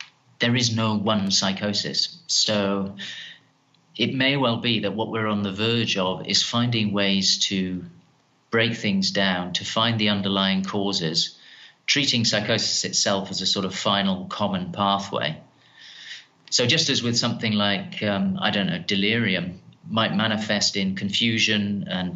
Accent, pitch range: British, 95-120 Hz